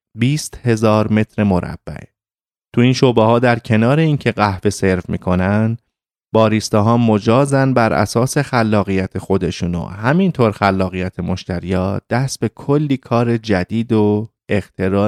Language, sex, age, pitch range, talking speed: Persian, male, 30-49, 100-125 Hz, 125 wpm